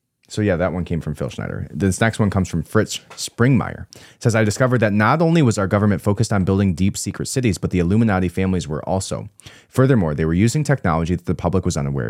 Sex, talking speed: male, 235 wpm